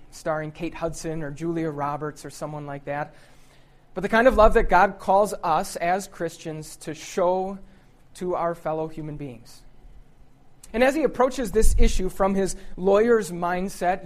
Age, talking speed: 30-49, 160 wpm